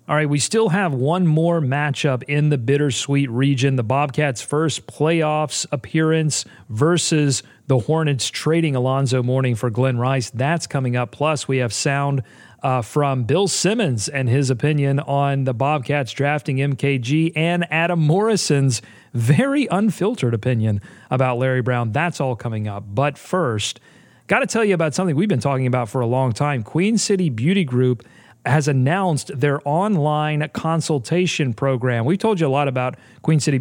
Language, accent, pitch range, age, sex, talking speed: English, American, 130-165 Hz, 40-59, male, 165 wpm